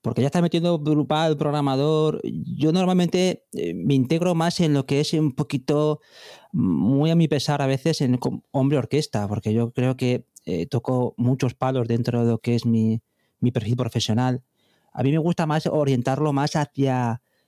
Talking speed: 170 wpm